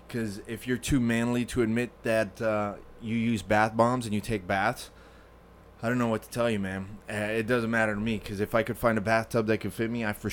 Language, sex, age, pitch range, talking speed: English, male, 20-39, 105-120 Hz, 250 wpm